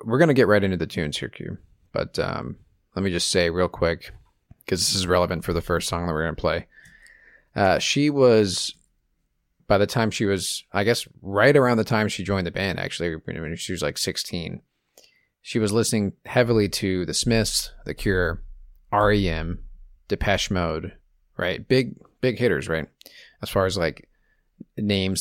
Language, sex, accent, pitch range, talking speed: English, male, American, 90-110 Hz, 185 wpm